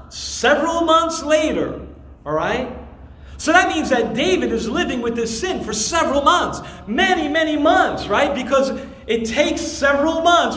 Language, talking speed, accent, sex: English, 155 wpm, American, male